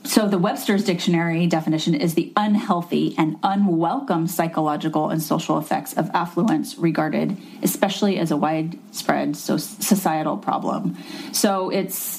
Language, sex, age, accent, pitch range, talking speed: English, female, 30-49, American, 165-210 Hz, 125 wpm